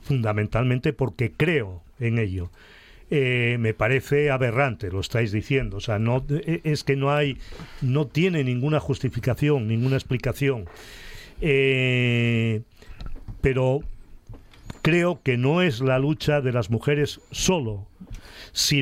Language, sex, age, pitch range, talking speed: Spanish, male, 40-59, 120-145 Hz, 120 wpm